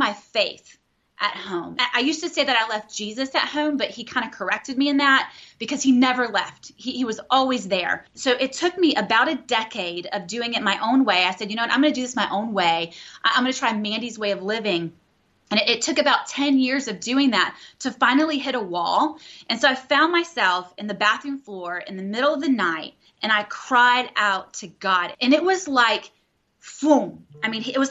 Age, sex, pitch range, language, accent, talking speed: 30-49, female, 215-285 Hz, English, American, 235 wpm